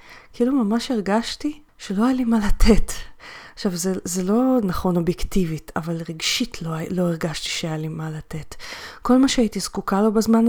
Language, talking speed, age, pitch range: Hebrew, 165 wpm, 30-49, 180-230 Hz